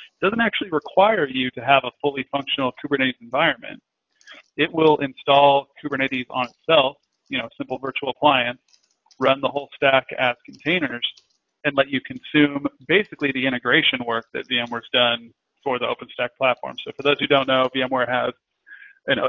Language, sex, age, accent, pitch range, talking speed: English, male, 30-49, American, 120-140 Hz, 165 wpm